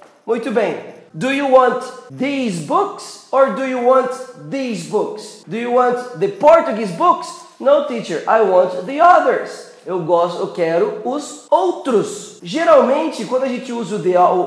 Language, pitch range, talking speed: Portuguese, 205-290 Hz, 160 wpm